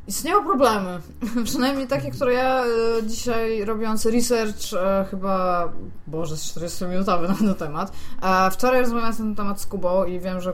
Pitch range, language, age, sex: 185-235 Hz, Polish, 20-39, female